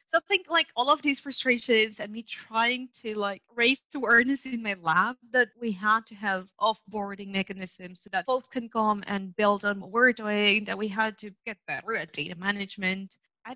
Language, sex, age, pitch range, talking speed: English, female, 20-39, 195-235 Hz, 205 wpm